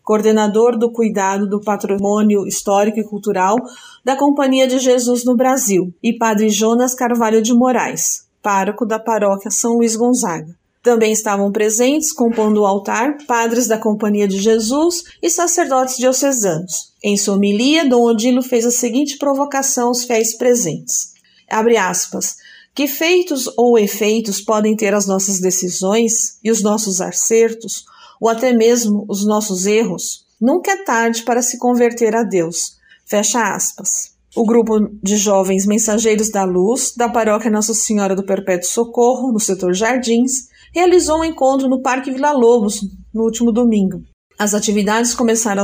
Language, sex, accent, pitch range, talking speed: Portuguese, female, Brazilian, 205-255 Hz, 150 wpm